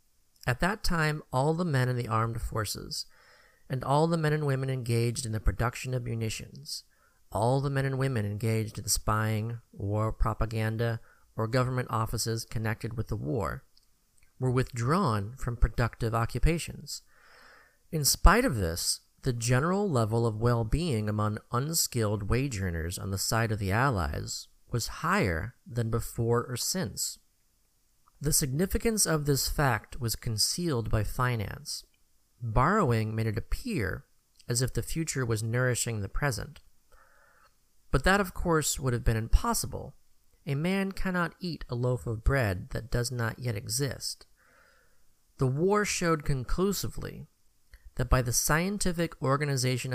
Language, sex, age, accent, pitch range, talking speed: English, male, 40-59, American, 110-145 Hz, 145 wpm